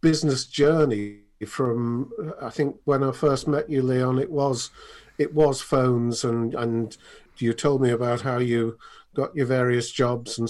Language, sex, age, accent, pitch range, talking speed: English, male, 50-69, British, 120-150 Hz, 165 wpm